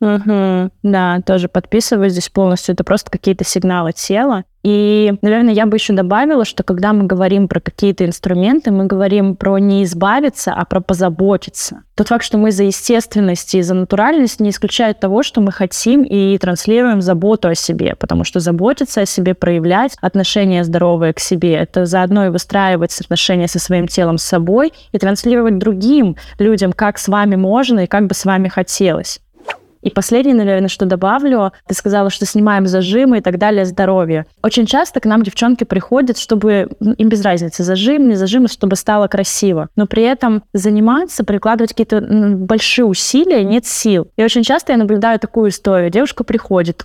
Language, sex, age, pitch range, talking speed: Russian, female, 20-39, 190-230 Hz, 175 wpm